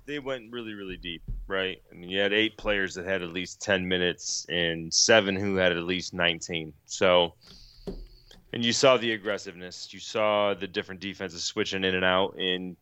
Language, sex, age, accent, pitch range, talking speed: English, male, 30-49, American, 90-105 Hz, 190 wpm